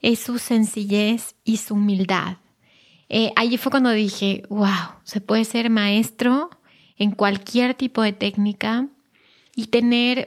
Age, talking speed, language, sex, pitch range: 20-39, 135 wpm, Spanish, female, 205-235 Hz